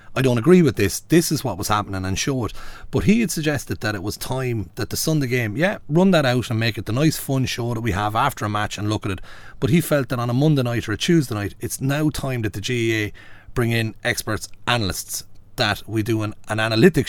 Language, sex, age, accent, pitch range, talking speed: English, male, 30-49, Irish, 105-135 Hz, 260 wpm